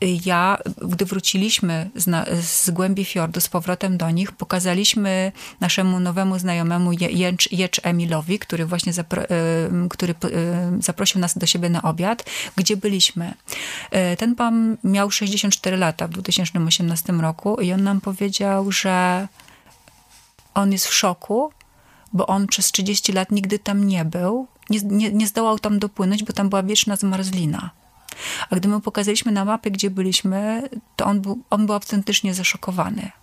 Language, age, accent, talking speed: Polish, 30-49, native, 145 wpm